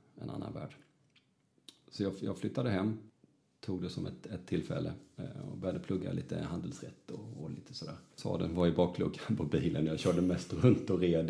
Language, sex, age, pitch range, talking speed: Swedish, male, 30-49, 85-110 Hz, 190 wpm